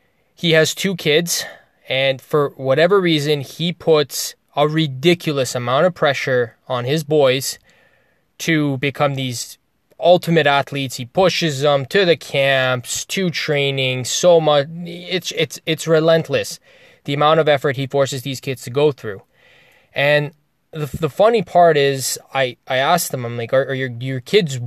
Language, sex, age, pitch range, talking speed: English, male, 20-39, 135-175 Hz, 160 wpm